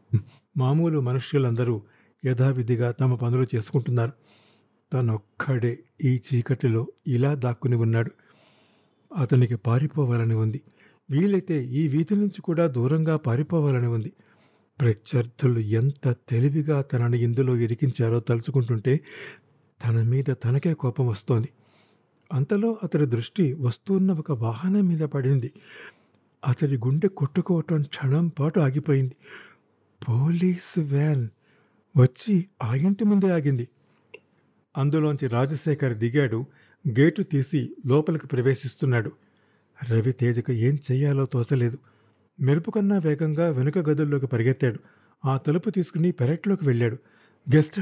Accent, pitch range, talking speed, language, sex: native, 120-155 Hz, 100 wpm, Telugu, male